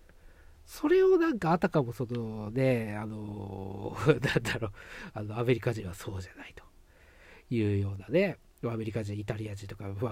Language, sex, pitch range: Japanese, male, 105-160 Hz